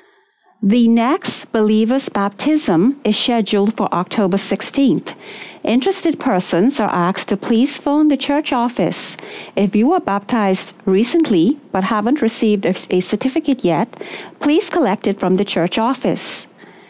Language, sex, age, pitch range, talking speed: English, female, 50-69, 200-285 Hz, 130 wpm